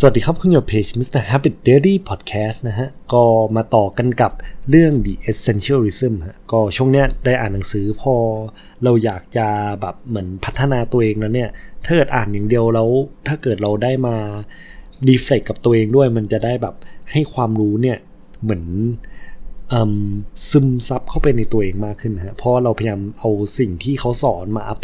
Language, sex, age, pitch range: Thai, male, 20-39, 105-140 Hz